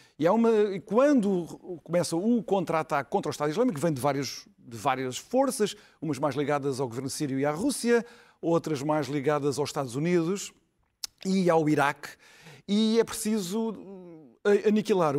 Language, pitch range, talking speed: Portuguese, 150-225 Hz, 155 wpm